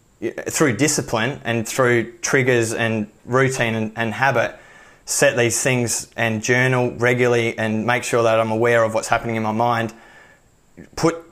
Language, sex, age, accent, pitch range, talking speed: English, male, 20-39, Australian, 115-135 Hz, 155 wpm